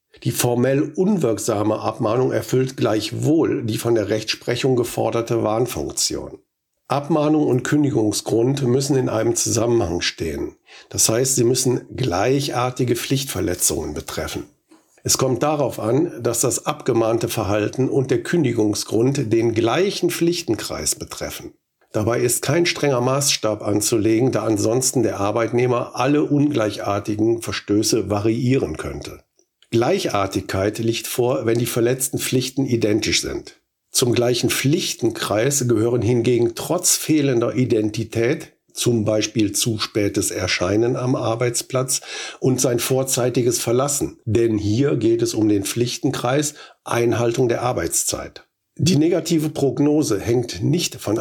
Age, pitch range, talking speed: 50-69, 110-130 Hz, 120 wpm